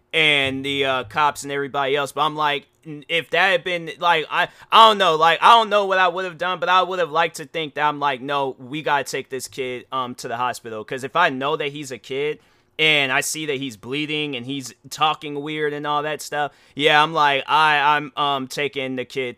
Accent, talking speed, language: American, 245 wpm, English